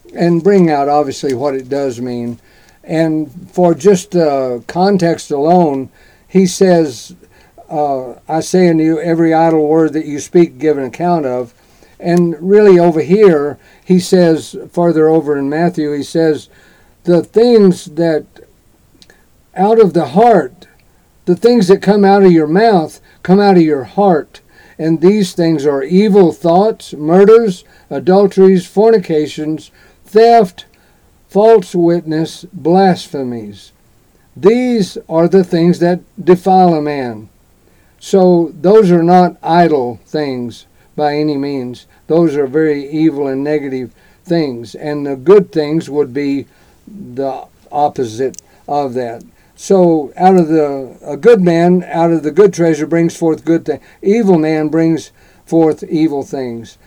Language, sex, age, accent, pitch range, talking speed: English, male, 50-69, American, 145-180 Hz, 140 wpm